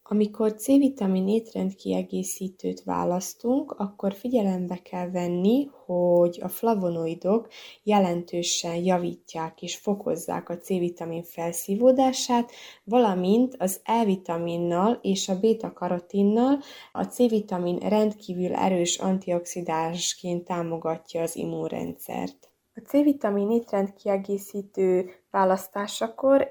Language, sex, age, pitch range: Hungarian, female, 20-39, 180-220 Hz